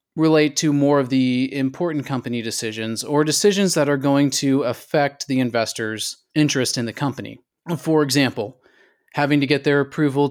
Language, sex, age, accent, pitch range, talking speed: English, male, 30-49, American, 120-145 Hz, 165 wpm